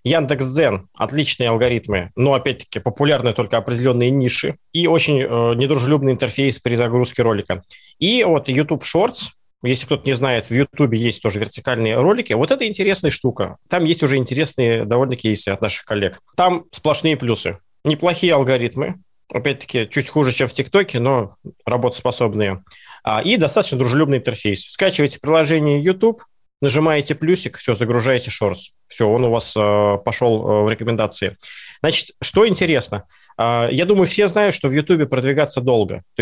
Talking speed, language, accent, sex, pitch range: 150 wpm, Russian, native, male, 120-150 Hz